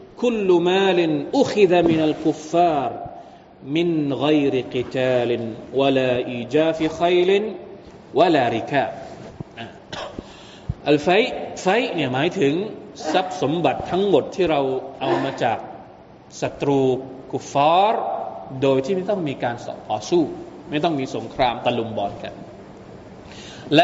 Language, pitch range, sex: Thai, 130-180 Hz, male